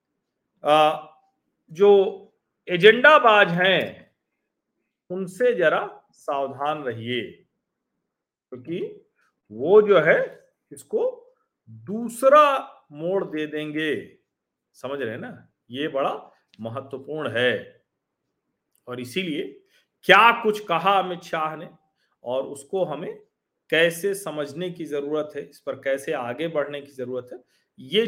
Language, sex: Hindi, male